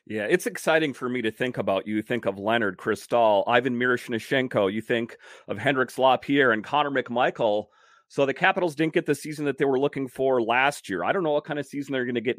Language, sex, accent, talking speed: English, male, American, 230 wpm